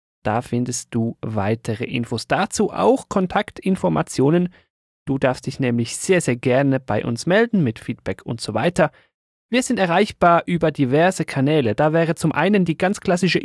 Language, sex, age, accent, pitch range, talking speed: German, male, 30-49, German, 125-190 Hz, 160 wpm